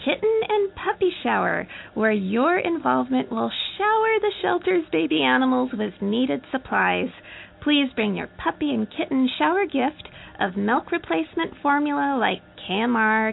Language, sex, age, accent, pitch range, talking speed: English, female, 30-49, American, 215-310 Hz, 135 wpm